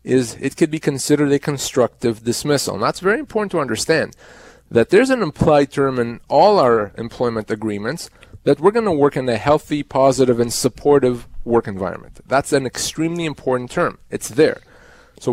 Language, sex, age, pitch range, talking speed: English, male, 30-49, 125-165 Hz, 170 wpm